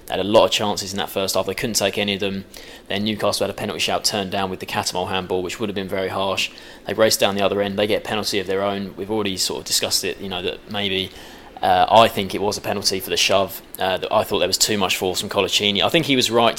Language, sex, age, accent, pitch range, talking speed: English, male, 20-39, British, 95-105 Hz, 295 wpm